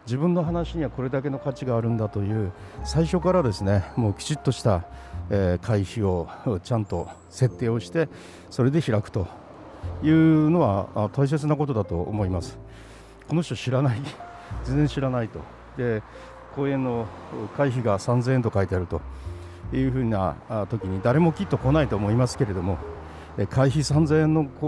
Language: Japanese